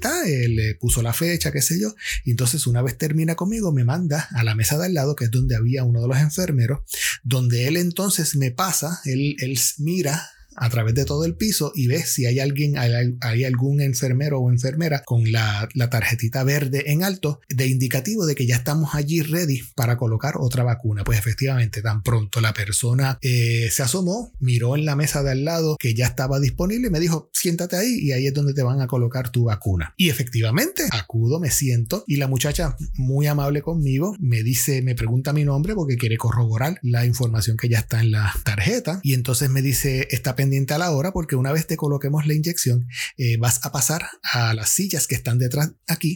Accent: Venezuelan